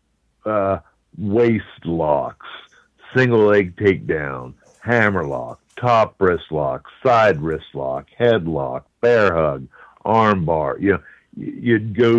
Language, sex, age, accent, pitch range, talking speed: English, male, 60-79, American, 85-110 Hz, 115 wpm